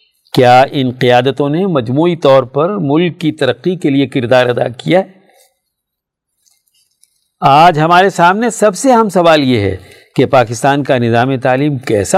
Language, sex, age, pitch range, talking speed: Urdu, male, 50-69, 125-175 Hz, 155 wpm